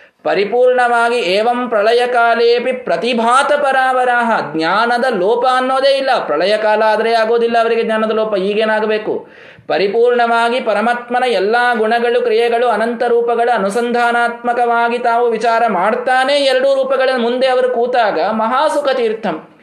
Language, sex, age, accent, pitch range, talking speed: Kannada, male, 20-39, native, 180-250 Hz, 110 wpm